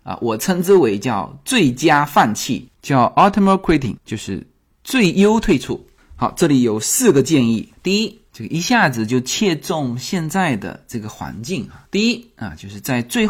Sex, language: male, Chinese